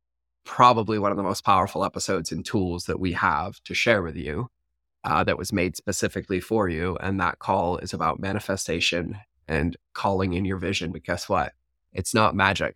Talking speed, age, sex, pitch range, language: 190 wpm, 20-39, male, 90-110 Hz, English